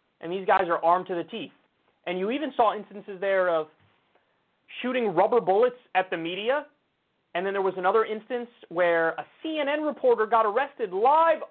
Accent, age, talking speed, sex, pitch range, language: American, 30-49, 175 wpm, male, 175-275 Hz, English